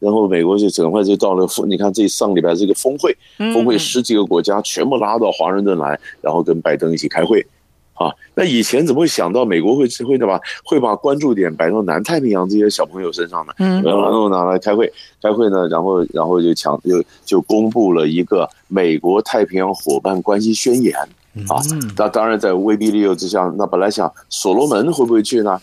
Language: Chinese